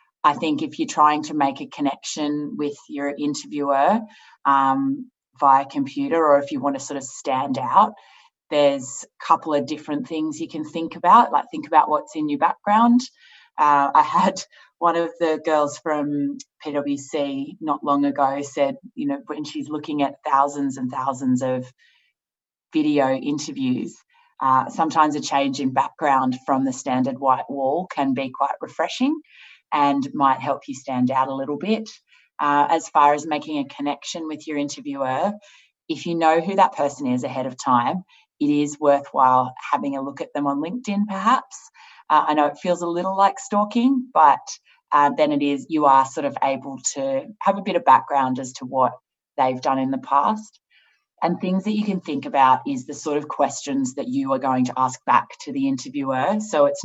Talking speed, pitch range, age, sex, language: 190 wpm, 140-205 Hz, 30-49, female, English